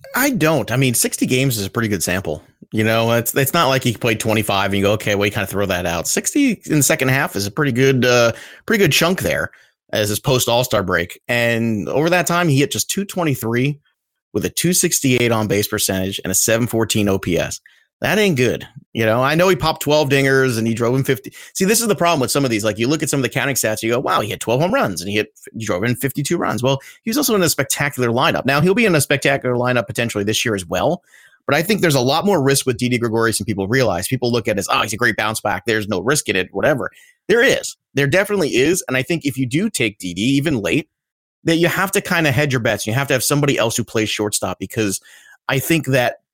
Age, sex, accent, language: 30-49, male, American, English